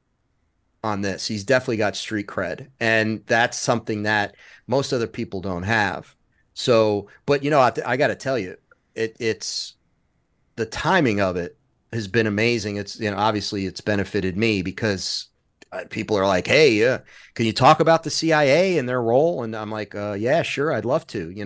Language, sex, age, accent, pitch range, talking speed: English, male, 30-49, American, 105-130 Hz, 185 wpm